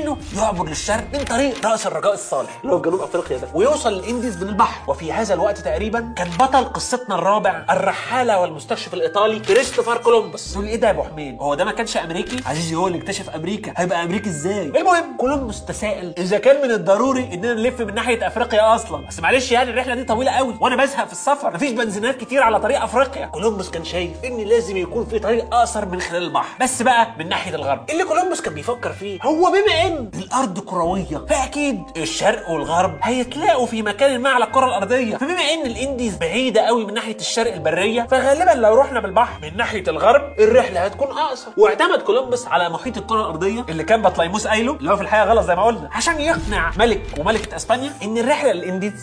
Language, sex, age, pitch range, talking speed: Arabic, male, 30-49, 200-265 Hz, 195 wpm